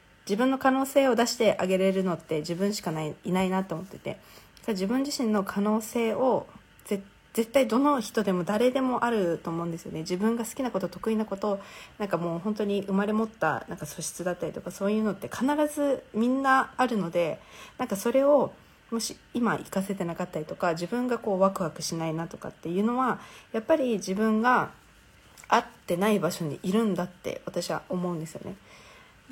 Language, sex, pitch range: Japanese, female, 175-230 Hz